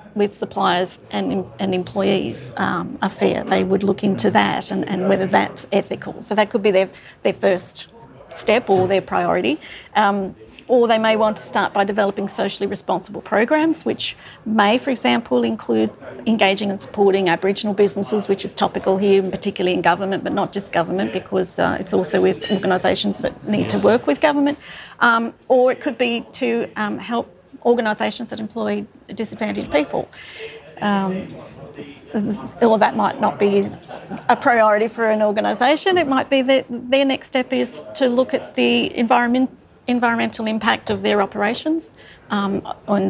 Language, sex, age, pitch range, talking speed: English, female, 40-59, 195-235 Hz, 165 wpm